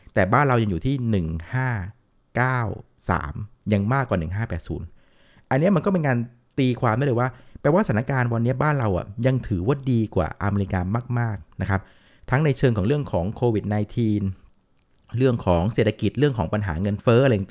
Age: 60-79